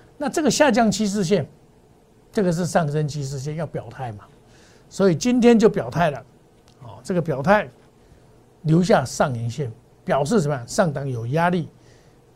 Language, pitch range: Chinese, 140-200 Hz